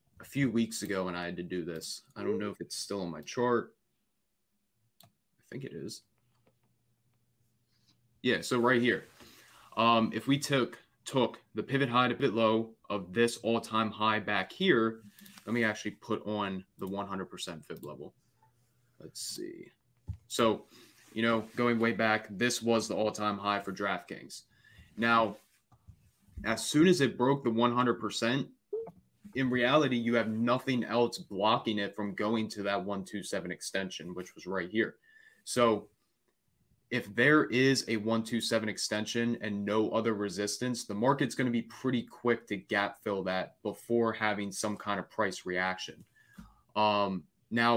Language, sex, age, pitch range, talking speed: English, male, 20-39, 105-120 Hz, 160 wpm